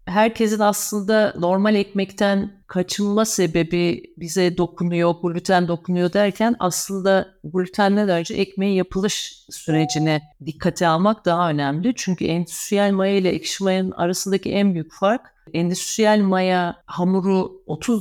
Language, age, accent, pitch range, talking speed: Turkish, 50-69, native, 160-195 Hz, 115 wpm